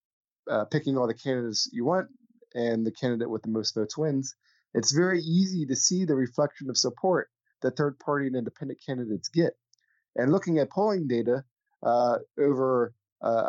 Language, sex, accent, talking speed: English, male, American, 170 wpm